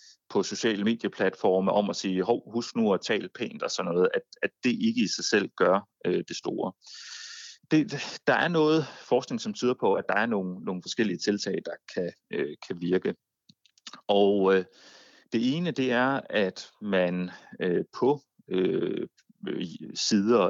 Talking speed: 170 wpm